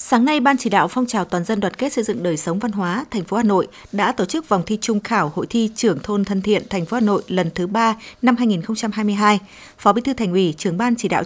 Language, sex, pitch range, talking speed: Vietnamese, female, 190-230 Hz, 275 wpm